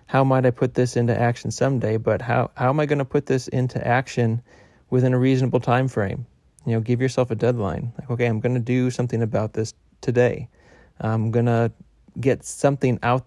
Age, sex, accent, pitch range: 30-49, male, American, 115-130 Hz